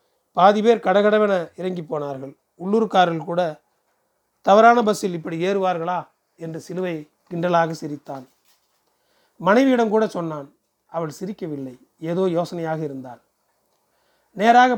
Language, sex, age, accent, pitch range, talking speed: Tamil, male, 30-49, native, 155-200 Hz, 95 wpm